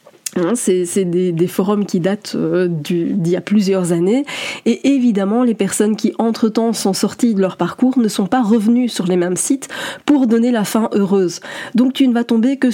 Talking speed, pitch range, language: 205 wpm, 190-235 Hz, French